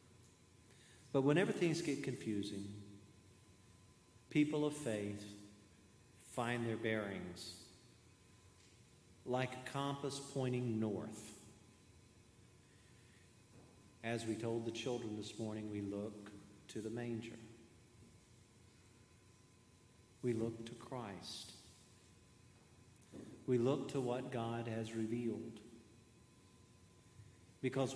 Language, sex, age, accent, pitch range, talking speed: English, male, 50-69, American, 105-125 Hz, 85 wpm